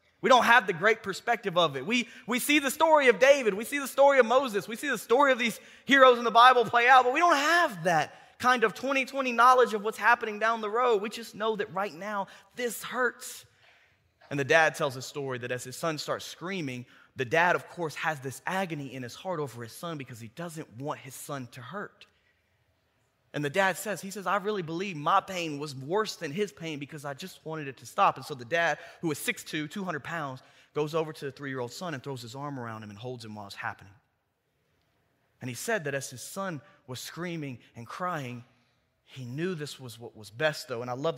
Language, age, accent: English, 20-39, American